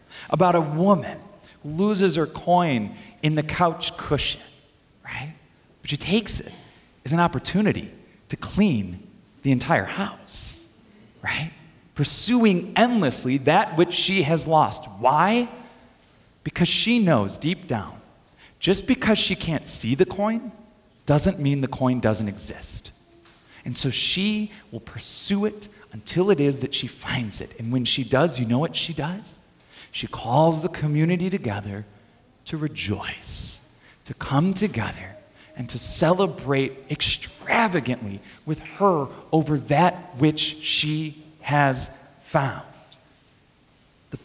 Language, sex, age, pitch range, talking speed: English, male, 30-49, 130-180 Hz, 130 wpm